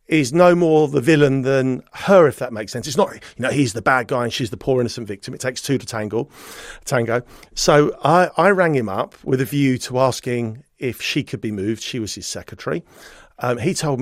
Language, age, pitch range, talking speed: English, 40-59, 120-150 Hz, 225 wpm